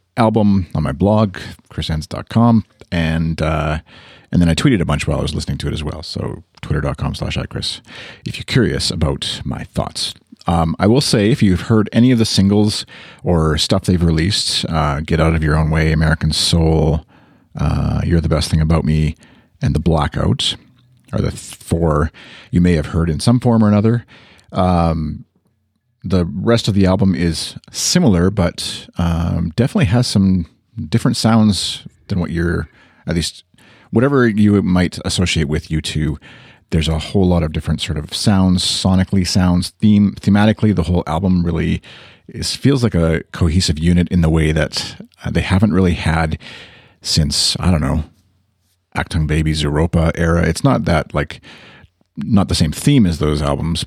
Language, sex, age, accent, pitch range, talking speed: English, male, 40-59, American, 80-105 Hz, 170 wpm